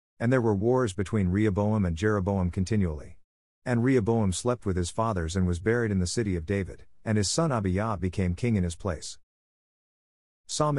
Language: English